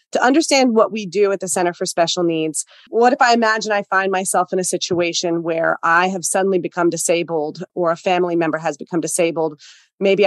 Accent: American